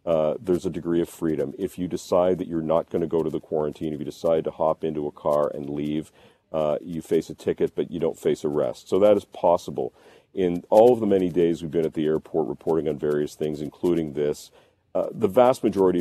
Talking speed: 235 wpm